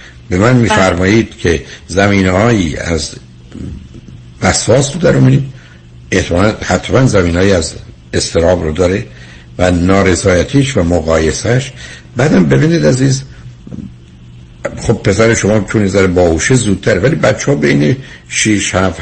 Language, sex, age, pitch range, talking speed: Persian, male, 60-79, 75-110 Hz, 115 wpm